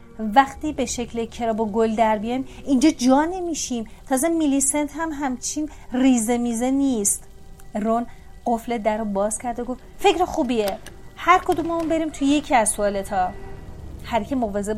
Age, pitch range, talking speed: 40-59, 215-265 Hz, 145 wpm